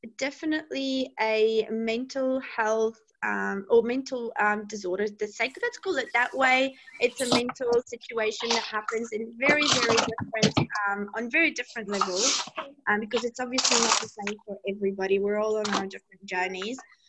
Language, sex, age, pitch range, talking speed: English, female, 20-39, 200-255 Hz, 160 wpm